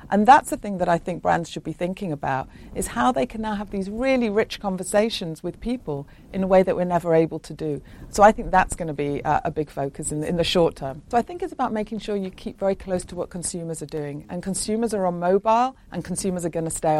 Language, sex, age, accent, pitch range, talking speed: English, female, 40-59, British, 160-205 Hz, 260 wpm